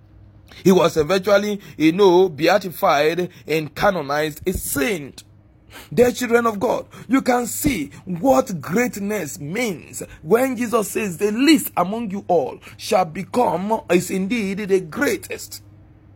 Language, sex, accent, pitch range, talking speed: English, male, Nigerian, 155-230 Hz, 125 wpm